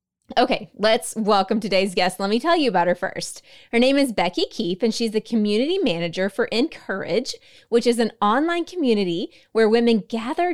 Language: English